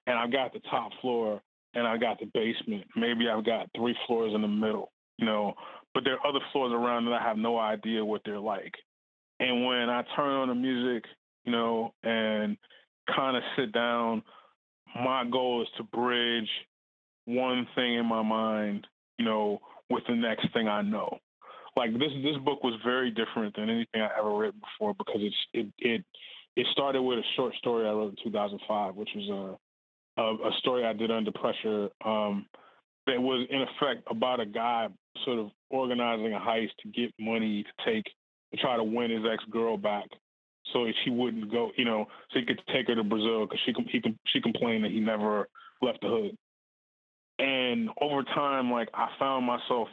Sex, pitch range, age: male, 110-125 Hz, 20-39